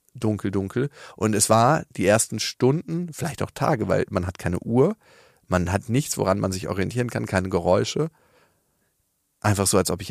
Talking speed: 185 wpm